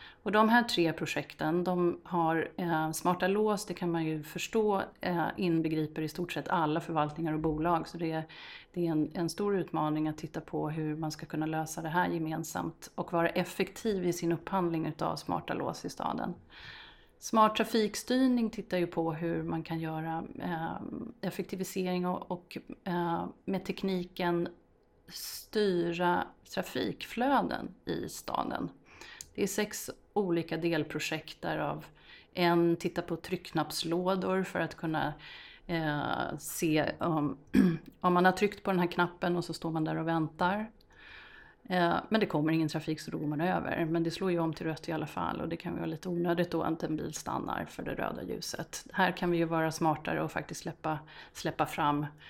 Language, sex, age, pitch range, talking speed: Swedish, female, 30-49, 160-180 Hz, 165 wpm